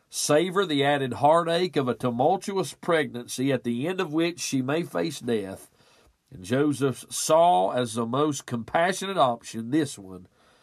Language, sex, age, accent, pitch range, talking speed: English, male, 50-69, American, 120-160 Hz, 150 wpm